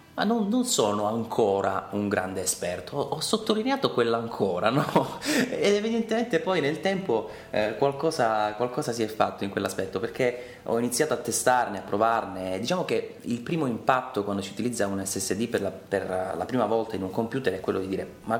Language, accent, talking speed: Italian, native, 190 wpm